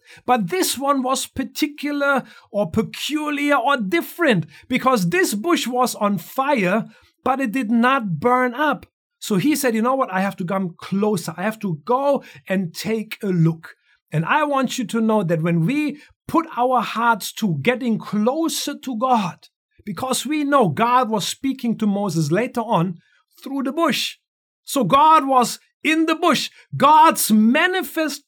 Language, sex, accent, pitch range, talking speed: English, male, German, 220-290 Hz, 165 wpm